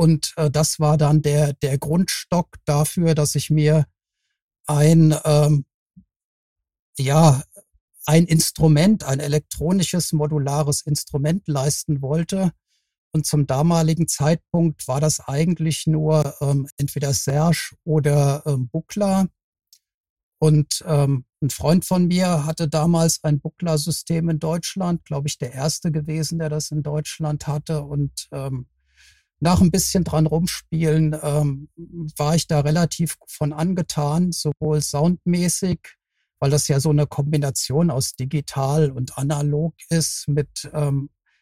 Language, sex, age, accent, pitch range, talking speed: German, male, 50-69, German, 145-165 Hz, 125 wpm